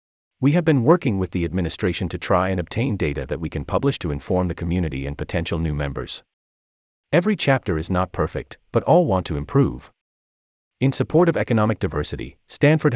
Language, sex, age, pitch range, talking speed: English, male, 40-59, 75-105 Hz, 185 wpm